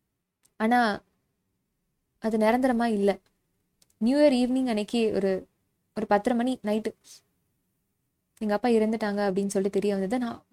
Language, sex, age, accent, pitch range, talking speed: Tamil, female, 20-39, native, 210-255 Hz, 120 wpm